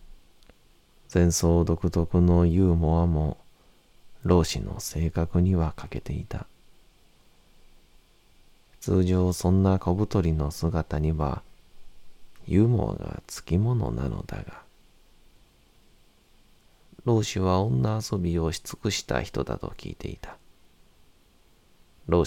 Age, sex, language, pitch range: 40-59, male, Japanese, 75-90 Hz